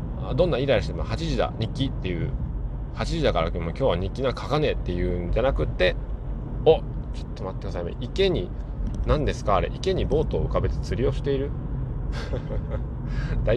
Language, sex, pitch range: Japanese, male, 90-135 Hz